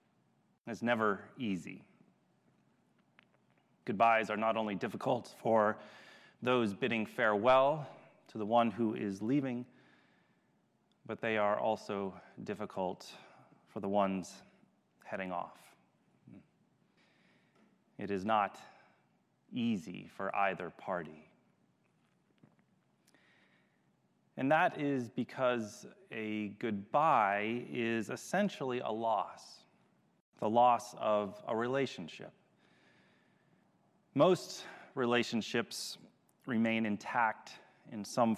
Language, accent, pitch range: English, American, 105-130 Hz